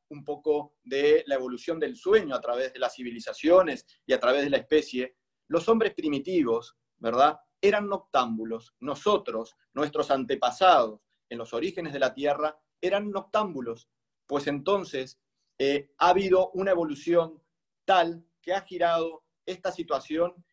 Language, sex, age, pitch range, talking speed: Spanish, male, 30-49, 140-185 Hz, 140 wpm